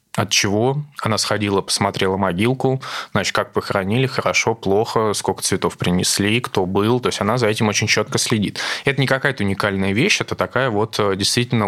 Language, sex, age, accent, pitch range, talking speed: Russian, male, 20-39, native, 100-125 Hz, 170 wpm